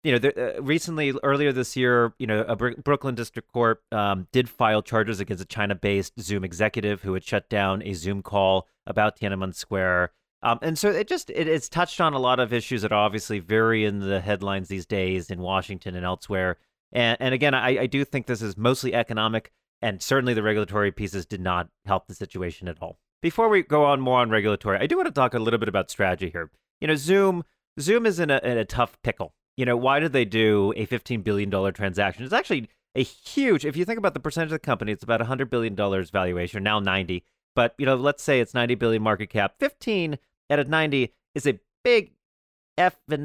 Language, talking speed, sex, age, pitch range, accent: English, 215 wpm, male, 30-49, 100-135 Hz, American